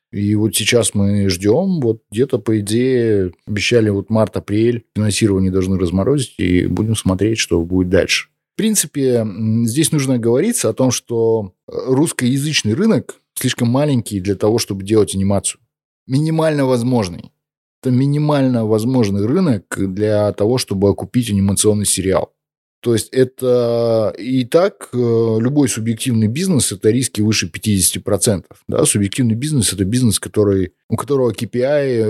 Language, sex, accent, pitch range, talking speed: Russian, male, native, 100-125 Hz, 135 wpm